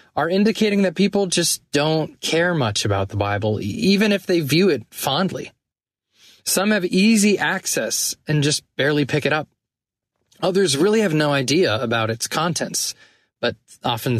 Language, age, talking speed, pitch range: English, 20-39, 155 wpm, 120-175 Hz